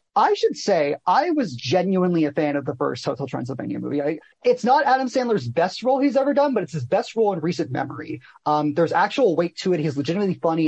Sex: male